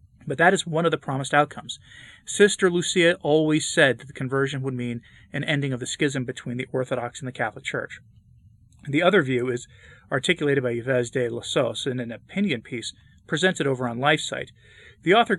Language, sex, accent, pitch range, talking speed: English, male, American, 120-150 Hz, 185 wpm